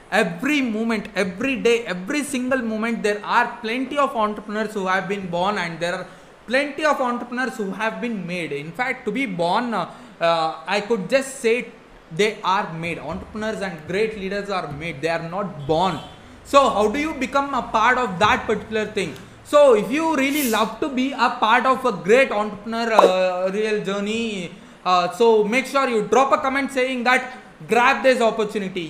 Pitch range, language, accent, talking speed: 190-250 Hz, English, Indian, 185 wpm